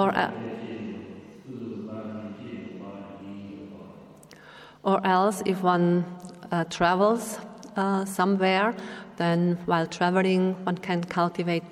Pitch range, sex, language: 170-185 Hz, female, English